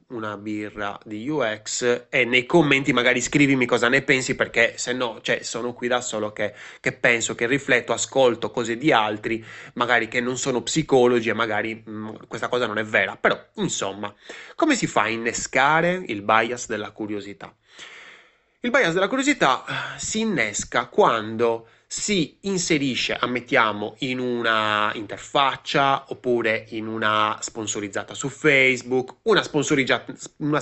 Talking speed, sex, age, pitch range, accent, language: 140 wpm, male, 20-39, 110-145 Hz, native, Italian